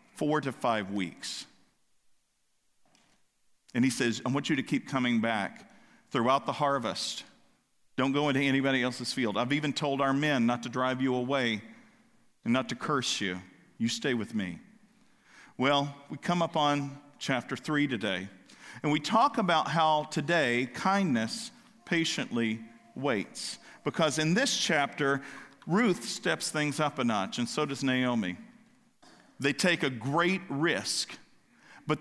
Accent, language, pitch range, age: American, English, 135-185 Hz, 50-69